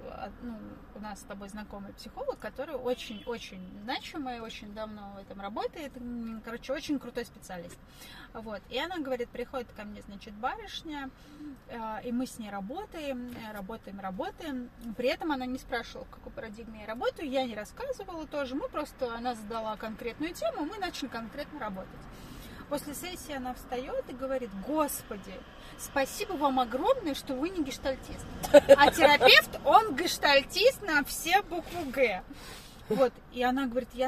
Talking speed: 150 wpm